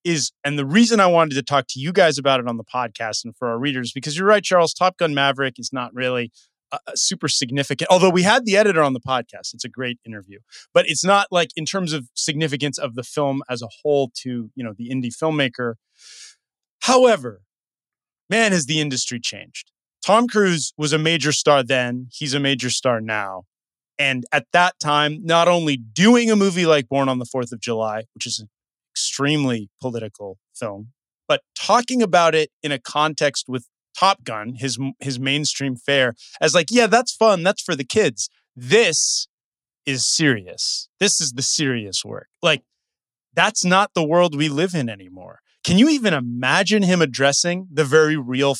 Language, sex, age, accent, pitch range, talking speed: English, male, 30-49, American, 125-170 Hz, 190 wpm